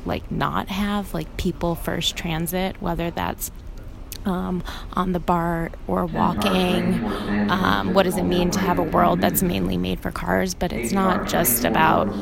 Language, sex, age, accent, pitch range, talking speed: English, female, 20-39, American, 150-180 Hz, 165 wpm